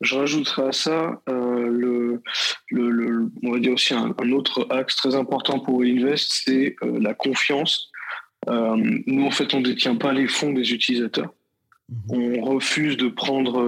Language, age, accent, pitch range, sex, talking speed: French, 20-39, French, 120-140 Hz, male, 175 wpm